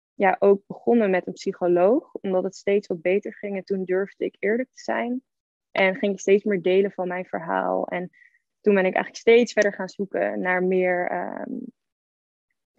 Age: 20-39